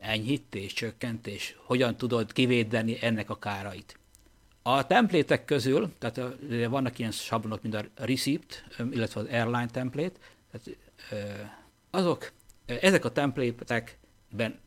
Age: 60-79